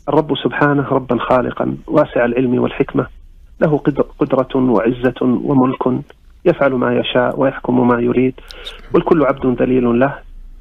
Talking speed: 120 wpm